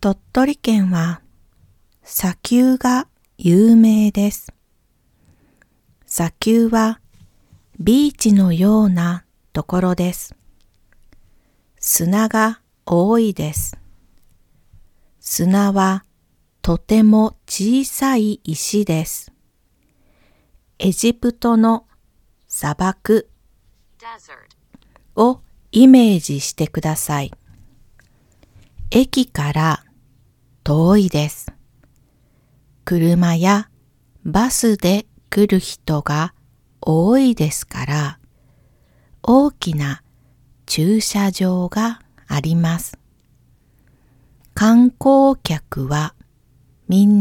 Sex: female